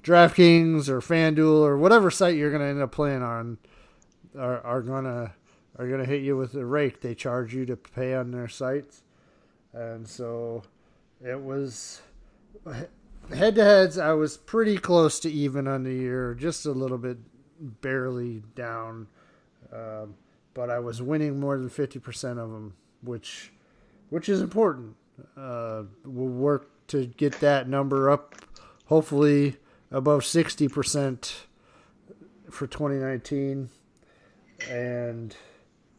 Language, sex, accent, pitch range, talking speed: English, male, American, 120-155 Hz, 140 wpm